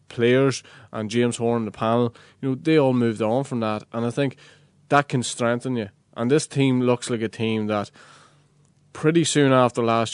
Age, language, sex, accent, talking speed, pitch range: 20-39, English, male, Irish, 195 wpm, 105-125 Hz